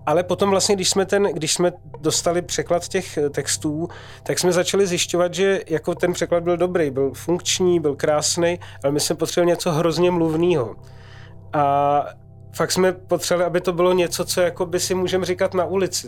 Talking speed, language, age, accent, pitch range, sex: 175 wpm, Czech, 30-49, native, 150-175 Hz, male